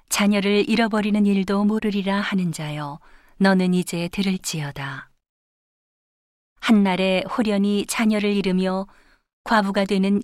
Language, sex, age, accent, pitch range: Korean, female, 40-59, native, 170-205 Hz